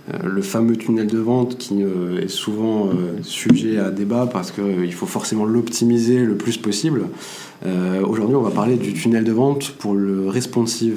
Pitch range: 100-120 Hz